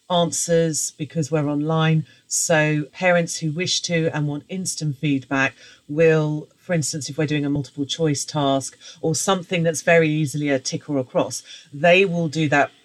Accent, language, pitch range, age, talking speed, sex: British, English, 140-170 Hz, 40-59, 175 wpm, female